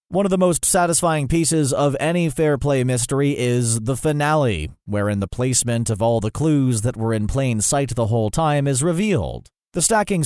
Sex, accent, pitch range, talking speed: male, American, 115-150 Hz, 195 wpm